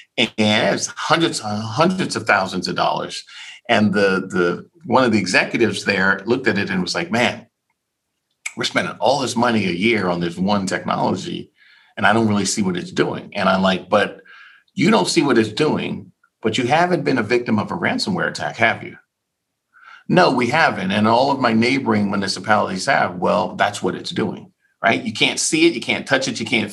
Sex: male